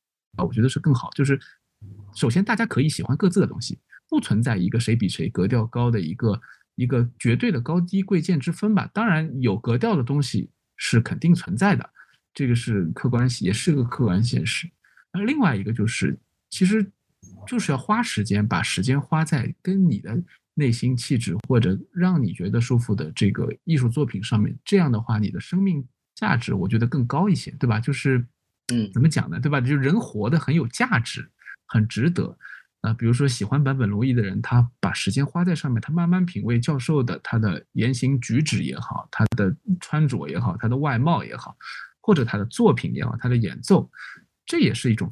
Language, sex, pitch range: Chinese, male, 115-170 Hz